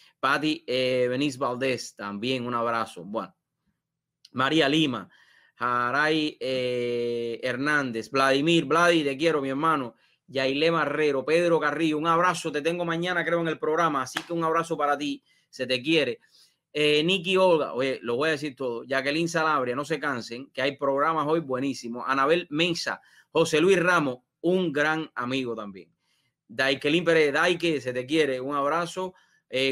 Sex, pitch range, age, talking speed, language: male, 130-165 Hz, 30-49, 160 wpm, English